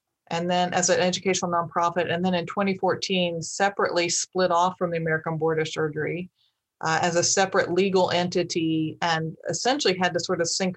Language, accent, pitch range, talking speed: English, American, 170-190 Hz, 180 wpm